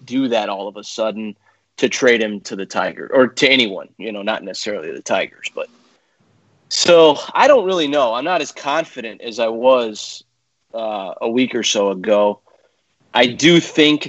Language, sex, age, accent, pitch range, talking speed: English, male, 30-49, American, 110-155 Hz, 185 wpm